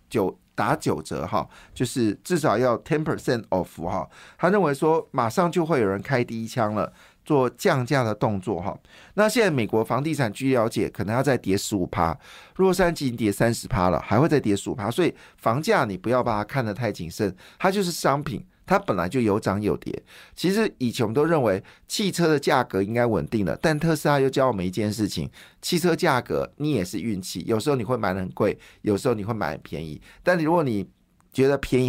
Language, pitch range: Chinese, 105-145 Hz